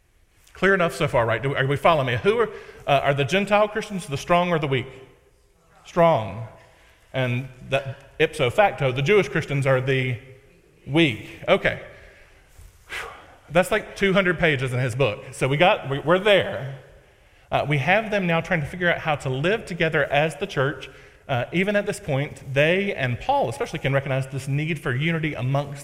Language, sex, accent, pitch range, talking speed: English, male, American, 130-165 Hz, 170 wpm